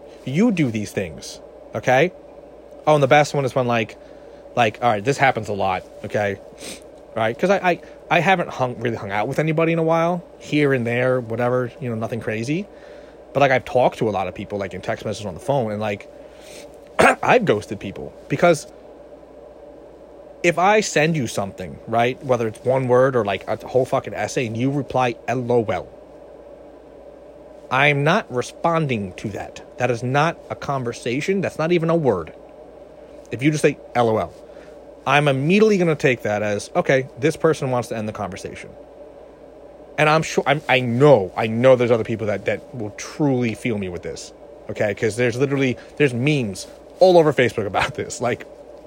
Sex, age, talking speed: male, 30-49, 185 wpm